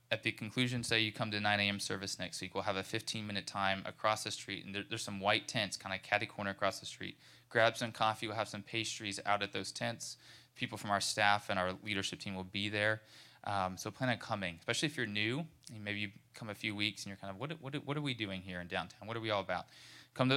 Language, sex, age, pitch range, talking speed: English, male, 20-39, 100-120 Hz, 265 wpm